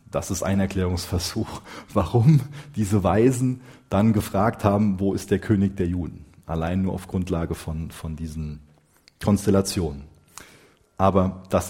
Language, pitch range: German, 95-120 Hz